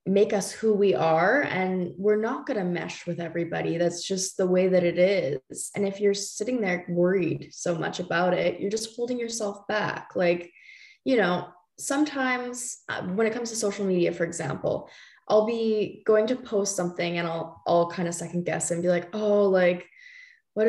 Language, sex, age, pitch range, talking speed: English, female, 10-29, 175-210 Hz, 190 wpm